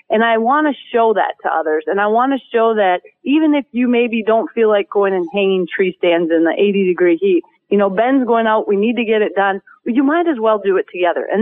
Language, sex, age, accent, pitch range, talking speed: English, female, 30-49, American, 200-250 Hz, 265 wpm